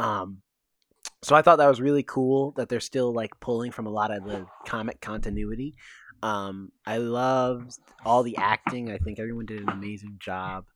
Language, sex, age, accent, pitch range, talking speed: English, male, 20-39, American, 110-150 Hz, 185 wpm